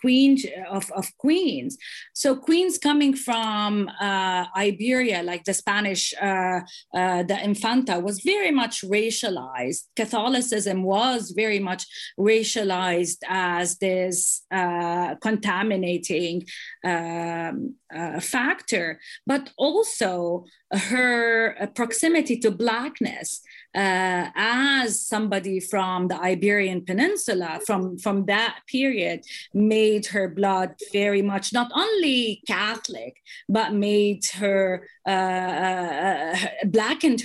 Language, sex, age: English, female, 30-49